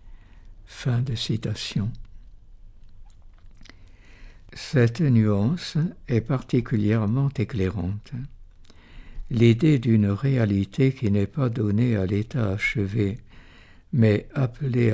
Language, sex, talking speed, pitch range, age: French, male, 80 wpm, 100-125 Hz, 60-79